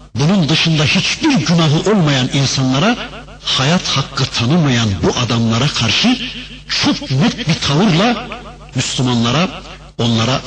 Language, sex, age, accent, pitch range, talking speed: Turkish, male, 60-79, native, 125-175 Hz, 105 wpm